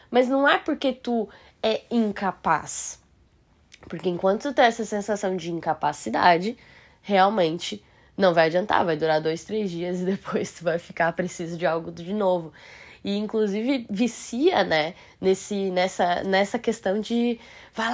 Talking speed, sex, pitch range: 145 wpm, female, 170-220 Hz